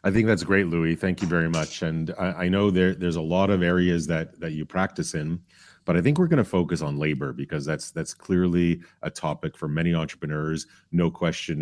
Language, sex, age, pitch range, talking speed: English, male, 30-49, 75-90 Hz, 225 wpm